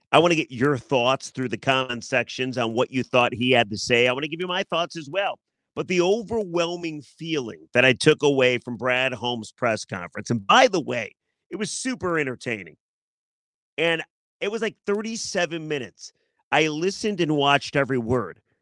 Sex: male